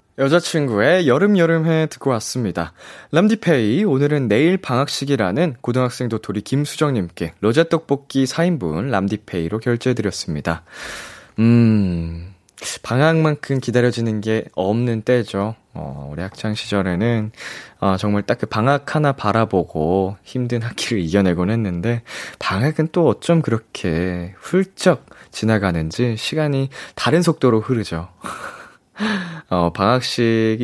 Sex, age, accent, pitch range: male, 20-39, native, 105-155 Hz